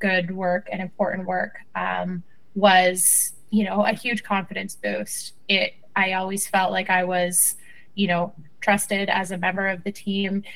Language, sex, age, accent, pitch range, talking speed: English, female, 20-39, American, 195-220 Hz, 165 wpm